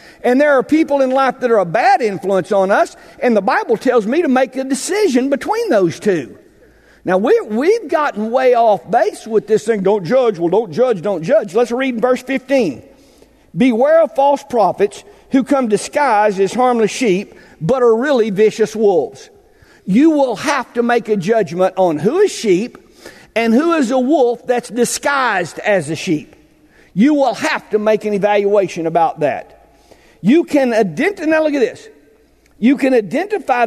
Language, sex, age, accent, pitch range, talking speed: English, male, 50-69, American, 190-270 Hz, 180 wpm